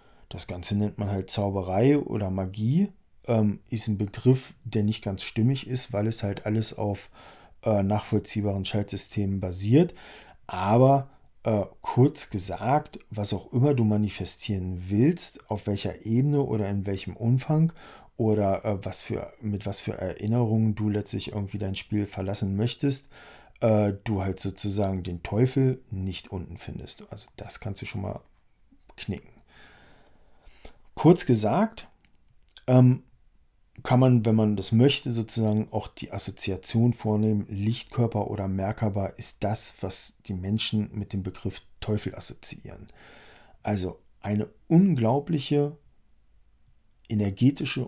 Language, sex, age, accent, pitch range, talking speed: English, male, 40-59, German, 100-120 Hz, 130 wpm